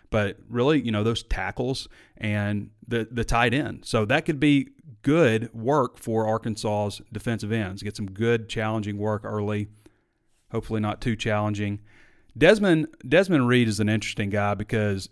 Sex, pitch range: male, 100-115 Hz